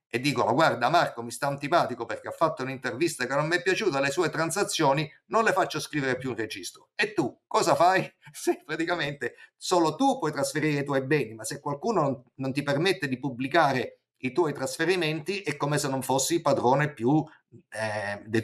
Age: 50-69